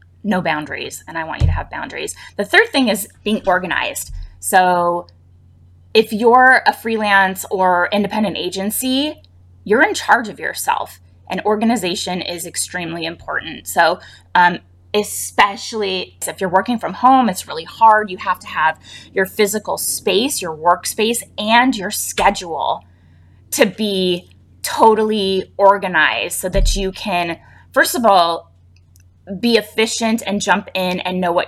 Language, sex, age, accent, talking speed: English, female, 20-39, American, 145 wpm